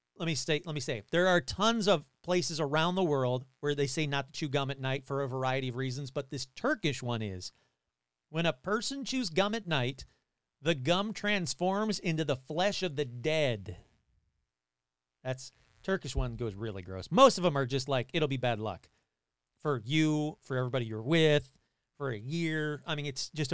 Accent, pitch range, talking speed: American, 120-175 Hz, 200 wpm